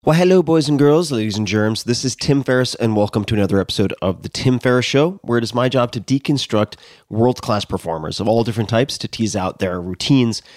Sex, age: male, 30-49